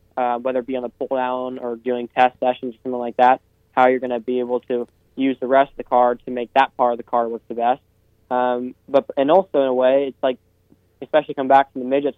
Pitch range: 120-135 Hz